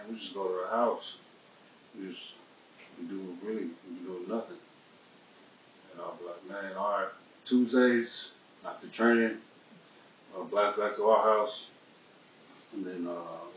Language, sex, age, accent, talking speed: English, male, 30-49, American, 135 wpm